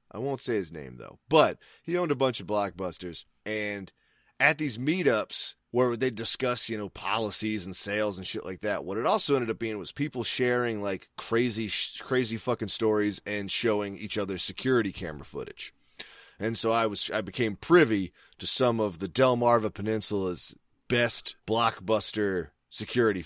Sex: male